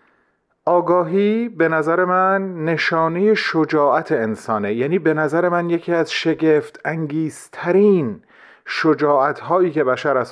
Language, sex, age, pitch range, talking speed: Persian, male, 40-59, 130-185 Hz, 110 wpm